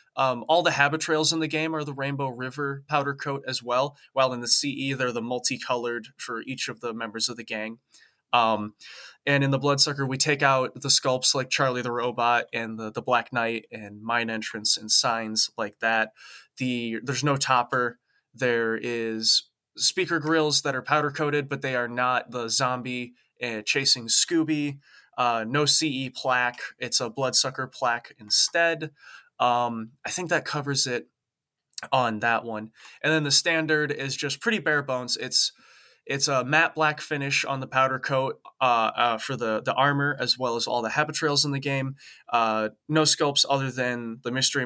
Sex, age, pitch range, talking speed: male, 20-39, 115-145 Hz, 185 wpm